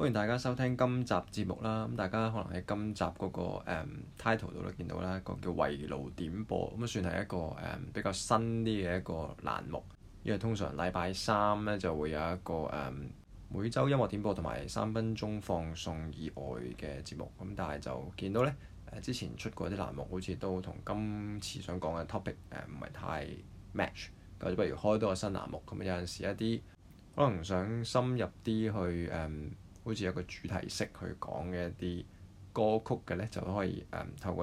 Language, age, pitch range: Chinese, 20-39, 85-105 Hz